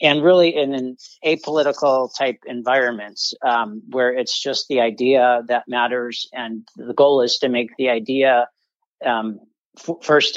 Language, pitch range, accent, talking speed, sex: English, 120-150 Hz, American, 150 wpm, male